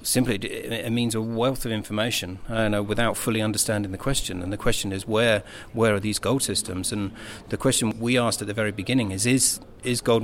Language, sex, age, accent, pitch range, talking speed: English, male, 40-59, British, 100-115 Hz, 210 wpm